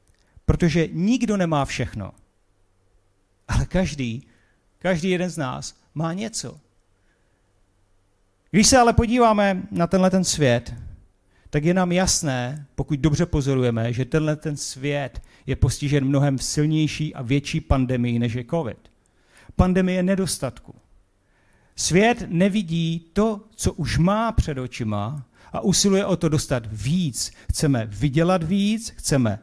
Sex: male